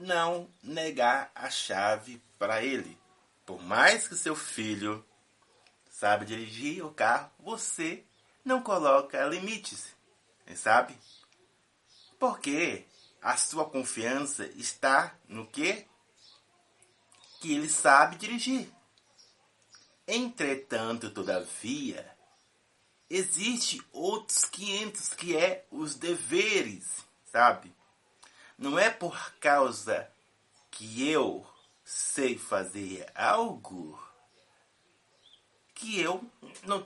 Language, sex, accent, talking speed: Portuguese, male, Brazilian, 85 wpm